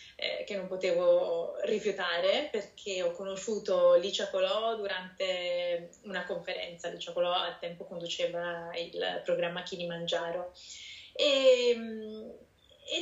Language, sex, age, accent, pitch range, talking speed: Italian, female, 20-39, native, 180-230 Hz, 105 wpm